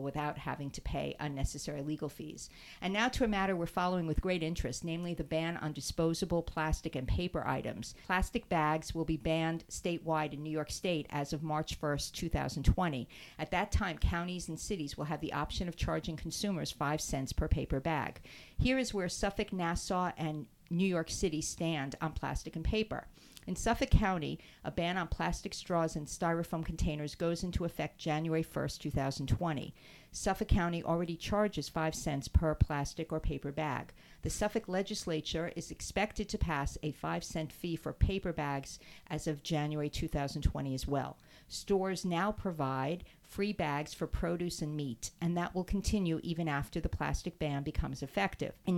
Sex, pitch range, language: female, 150-180 Hz, English